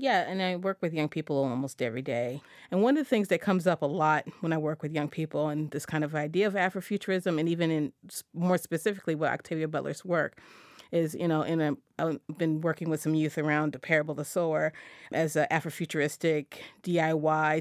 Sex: female